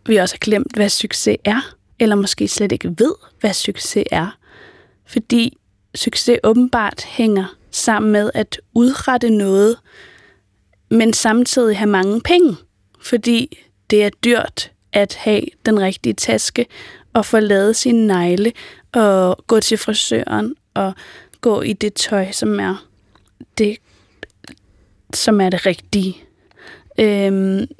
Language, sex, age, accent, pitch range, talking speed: Danish, female, 20-39, native, 190-245 Hz, 130 wpm